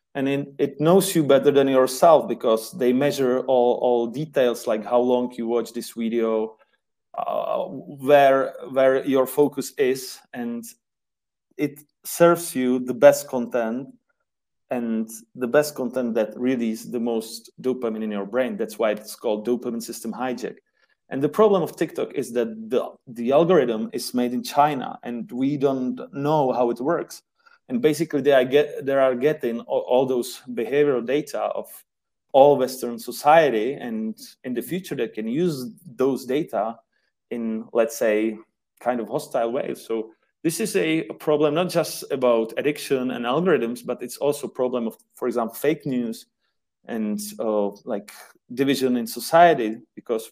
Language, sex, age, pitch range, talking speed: English, male, 30-49, 115-145 Hz, 160 wpm